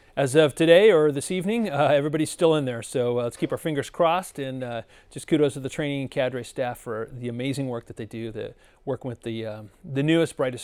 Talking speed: 245 wpm